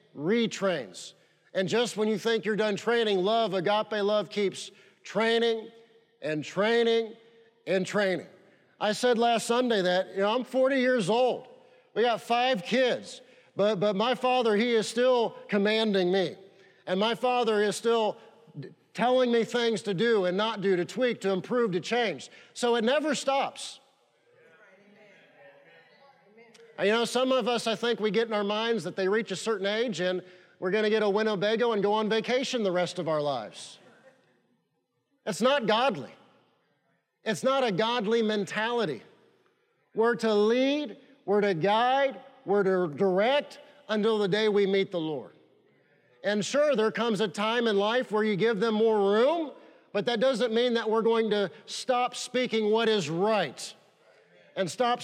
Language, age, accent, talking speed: English, 40-59, American, 165 wpm